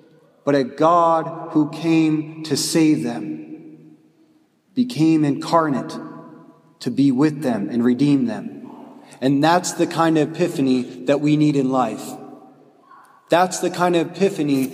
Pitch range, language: 135-165 Hz, English